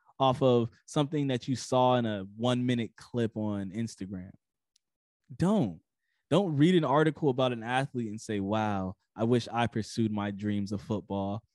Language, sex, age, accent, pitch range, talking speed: English, male, 20-39, American, 105-135 Hz, 165 wpm